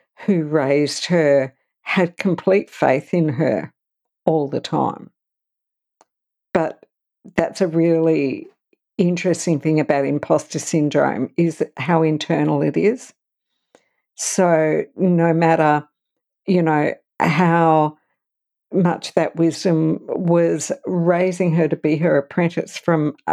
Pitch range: 150-170 Hz